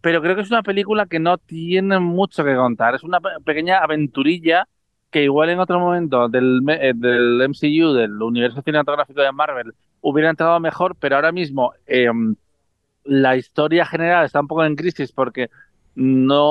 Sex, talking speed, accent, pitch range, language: male, 165 wpm, Spanish, 125-165 Hz, Spanish